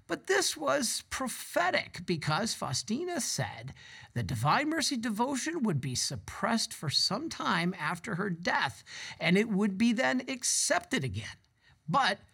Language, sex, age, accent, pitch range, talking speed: English, male, 50-69, American, 140-225 Hz, 135 wpm